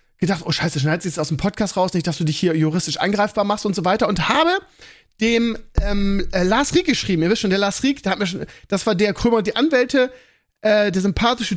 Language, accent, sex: German, German, male